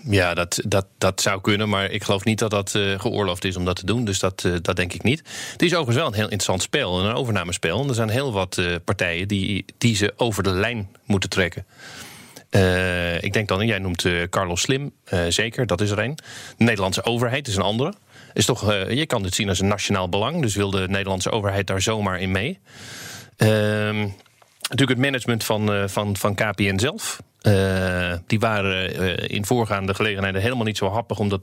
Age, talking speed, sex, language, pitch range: 40-59, 215 wpm, male, Dutch, 95-120 Hz